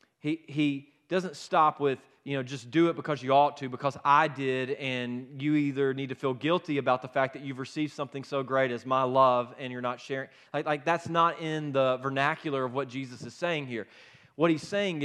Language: English